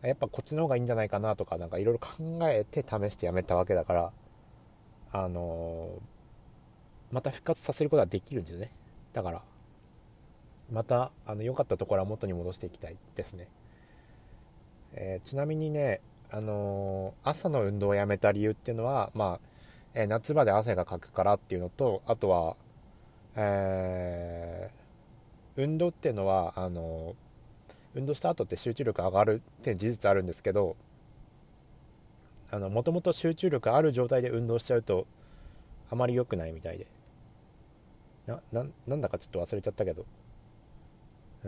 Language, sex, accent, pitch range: Japanese, male, native, 95-125 Hz